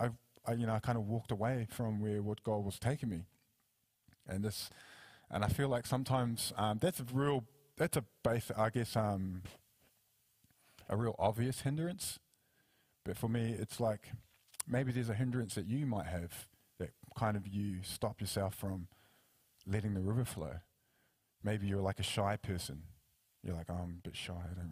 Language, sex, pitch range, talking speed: English, male, 95-120 Hz, 180 wpm